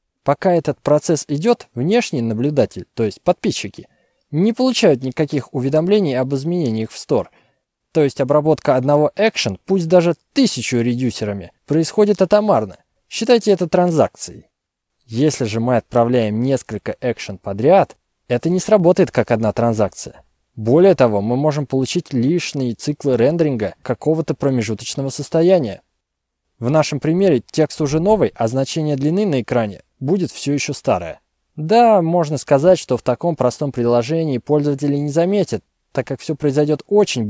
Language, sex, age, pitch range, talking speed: Russian, male, 20-39, 125-175 Hz, 140 wpm